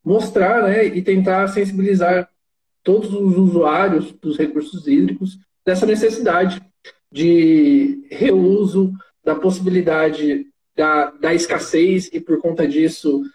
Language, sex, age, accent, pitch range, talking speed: Portuguese, male, 20-39, Brazilian, 170-215 Hz, 110 wpm